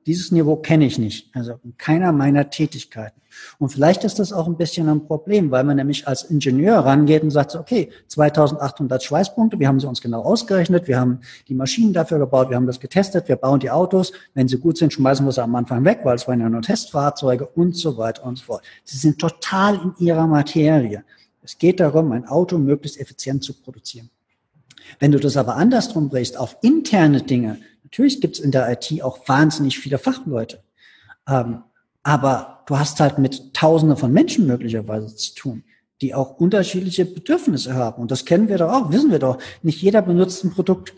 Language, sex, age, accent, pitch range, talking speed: German, male, 50-69, German, 130-170 Hz, 200 wpm